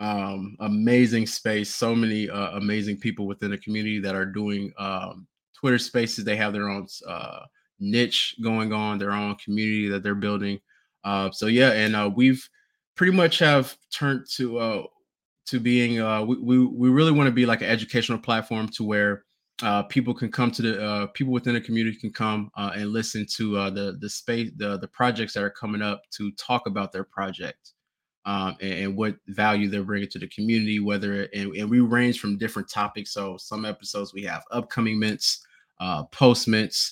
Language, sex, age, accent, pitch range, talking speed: English, male, 20-39, American, 100-115 Hz, 195 wpm